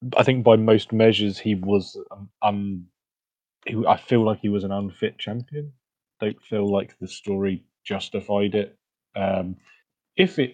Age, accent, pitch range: 20-39, British, 100-115 Hz